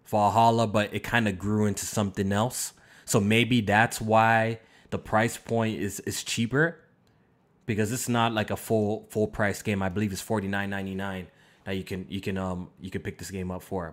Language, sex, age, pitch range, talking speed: English, male, 20-39, 105-125 Hz, 190 wpm